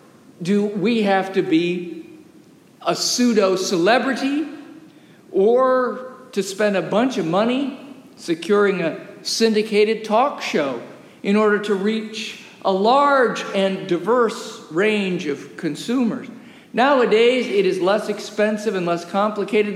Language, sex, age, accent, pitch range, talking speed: English, male, 50-69, American, 200-255 Hz, 115 wpm